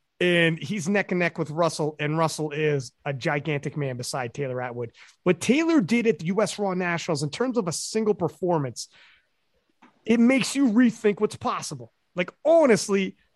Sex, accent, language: male, American, English